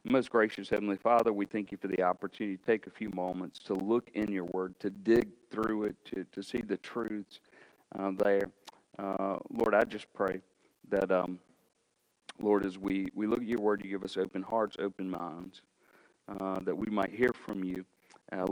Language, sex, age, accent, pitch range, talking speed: English, male, 40-59, American, 95-110 Hz, 195 wpm